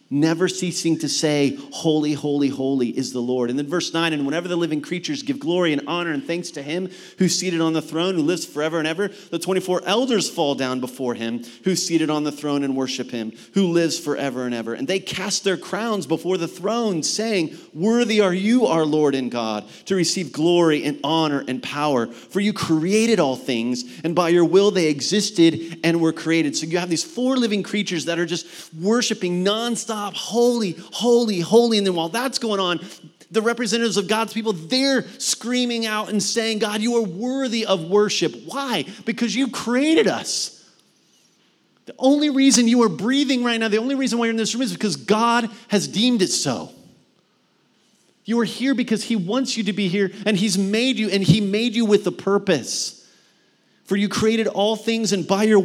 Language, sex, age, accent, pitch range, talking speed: English, male, 30-49, American, 160-220 Hz, 205 wpm